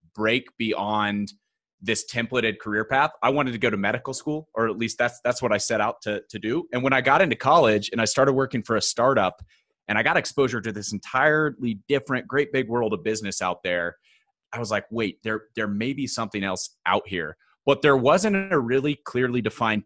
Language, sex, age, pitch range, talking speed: English, male, 30-49, 105-125 Hz, 220 wpm